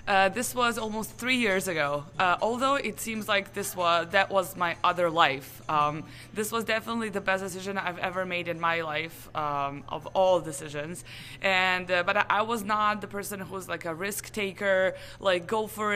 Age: 20-39